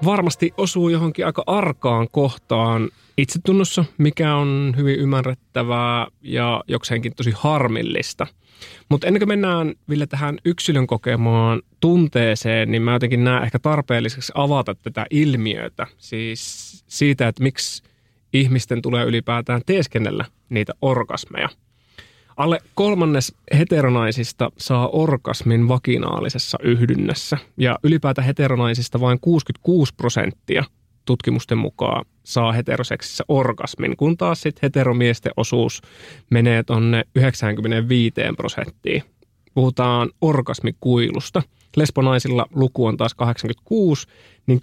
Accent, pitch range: native, 115-145 Hz